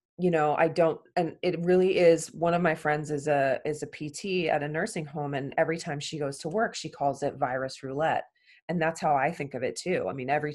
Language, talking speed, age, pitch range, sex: English, 250 wpm, 20-39, 135-160 Hz, female